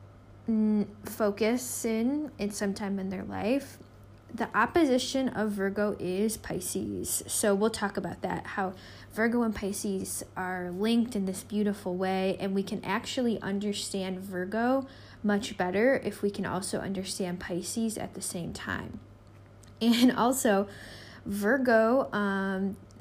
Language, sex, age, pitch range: English, female, 20-39, 190-225 Hz